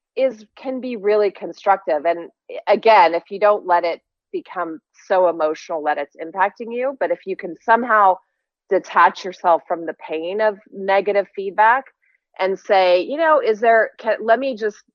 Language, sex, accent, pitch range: English, female, American, 170-215 Hz